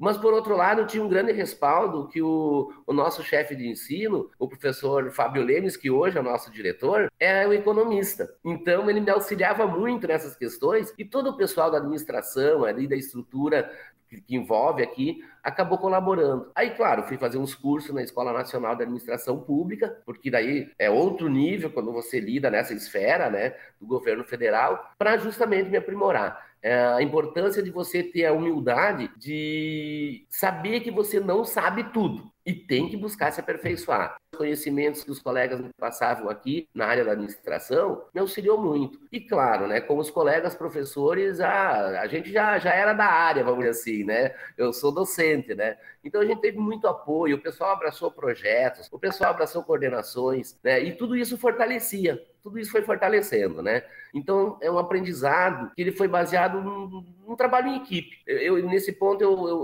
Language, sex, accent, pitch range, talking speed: Portuguese, male, Brazilian, 155-220 Hz, 180 wpm